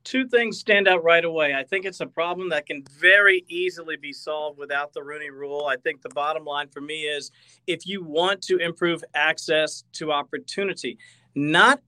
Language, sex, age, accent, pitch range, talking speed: English, male, 40-59, American, 150-215 Hz, 190 wpm